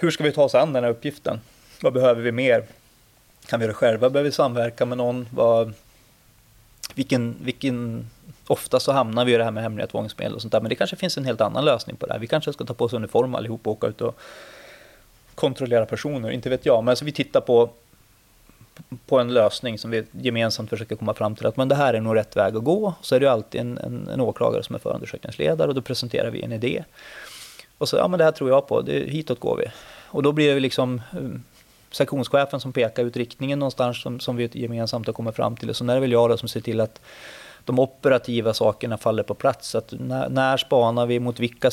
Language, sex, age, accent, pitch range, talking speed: Swedish, male, 30-49, native, 115-130 Hz, 240 wpm